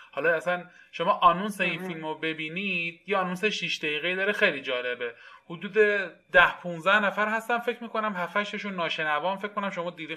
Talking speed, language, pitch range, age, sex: 165 wpm, Persian, 165-220 Hz, 20-39, male